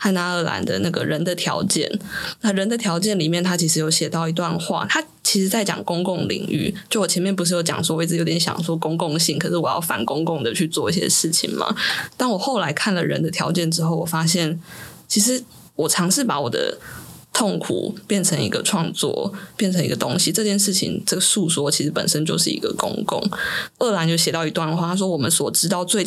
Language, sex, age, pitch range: Chinese, female, 20-39, 165-200 Hz